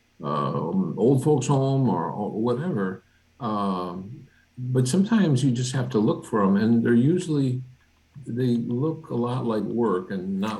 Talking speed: 160 wpm